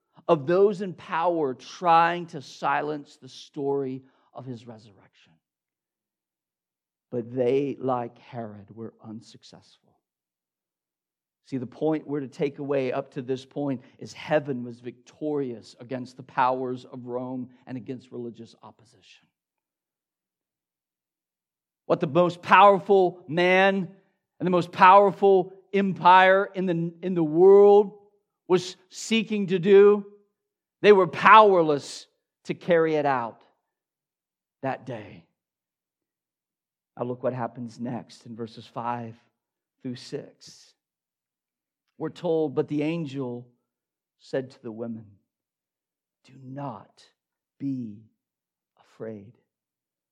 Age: 50-69